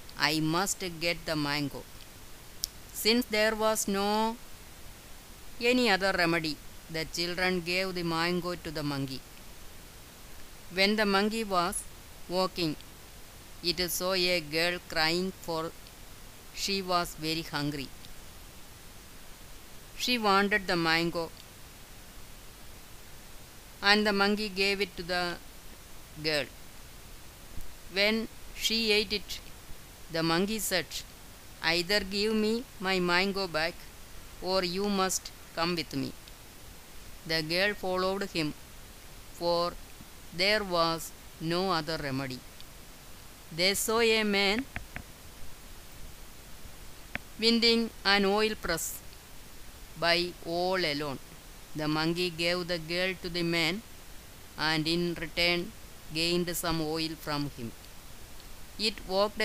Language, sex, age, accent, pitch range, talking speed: Malayalam, female, 30-49, native, 150-195 Hz, 105 wpm